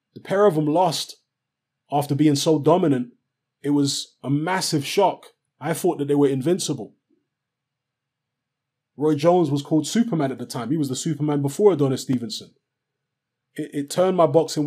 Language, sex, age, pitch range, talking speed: English, male, 20-39, 135-155 Hz, 165 wpm